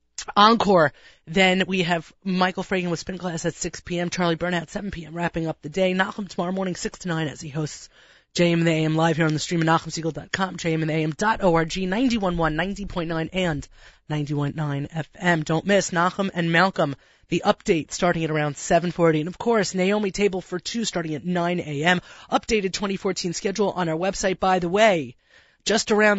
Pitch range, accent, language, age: 165-195 Hz, American, English, 30-49